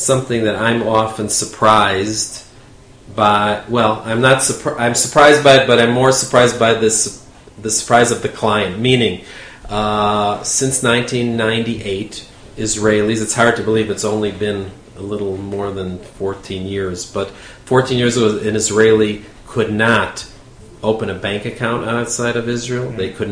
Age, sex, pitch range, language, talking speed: 40-59, male, 105-120 Hz, English, 155 wpm